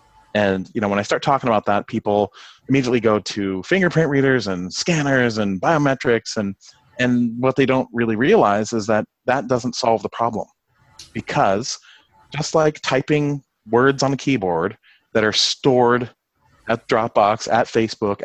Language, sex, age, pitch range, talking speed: English, male, 30-49, 110-140 Hz, 160 wpm